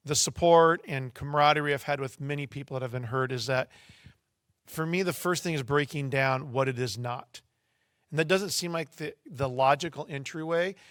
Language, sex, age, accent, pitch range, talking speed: English, male, 40-59, American, 135-170 Hz, 200 wpm